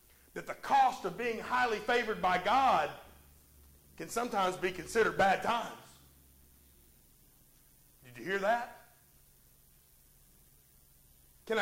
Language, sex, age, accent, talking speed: English, male, 40-59, American, 105 wpm